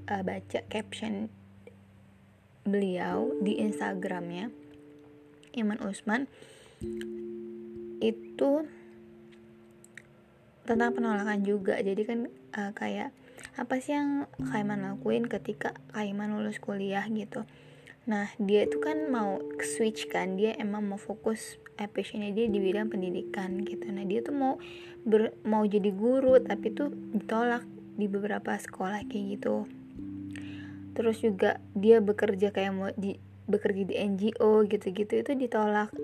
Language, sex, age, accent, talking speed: Indonesian, female, 20-39, native, 120 wpm